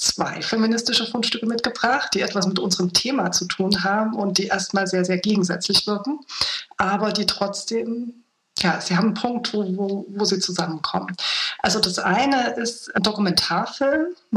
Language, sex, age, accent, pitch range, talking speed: German, female, 40-59, German, 185-215 Hz, 160 wpm